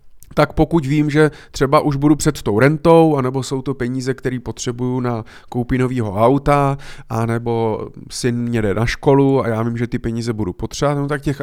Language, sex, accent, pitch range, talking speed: Czech, male, native, 120-145 Hz, 190 wpm